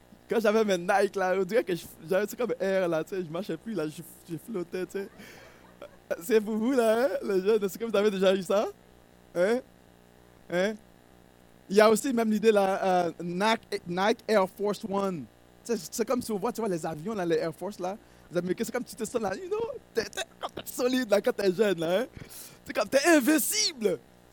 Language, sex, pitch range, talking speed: French, male, 160-230 Hz, 205 wpm